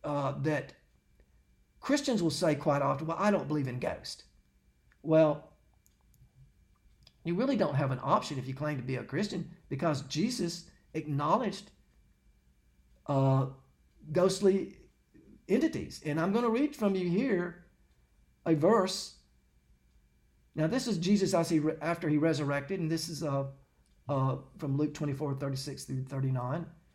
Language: English